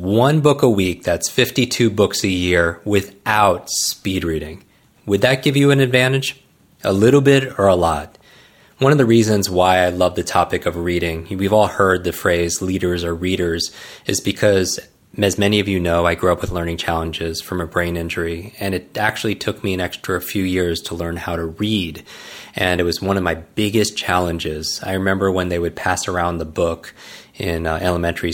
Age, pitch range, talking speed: 30-49, 85-100 Hz, 200 wpm